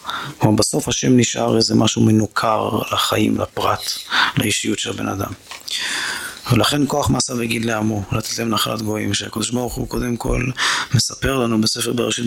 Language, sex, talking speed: Hebrew, male, 145 wpm